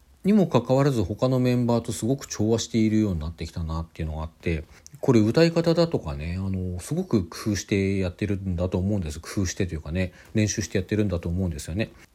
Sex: male